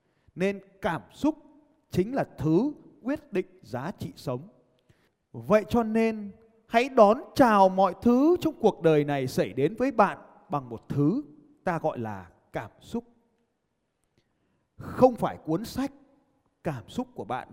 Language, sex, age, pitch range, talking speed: Vietnamese, male, 20-39, 170-270 Hz, 145 wpm